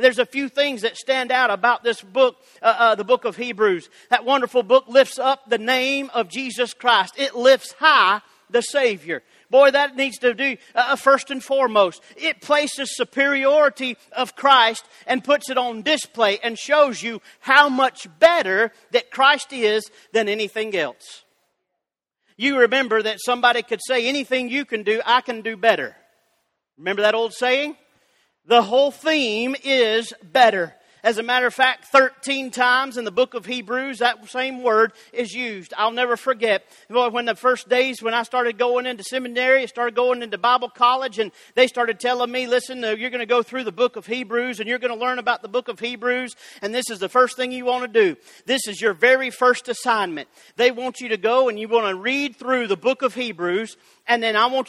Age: 40-59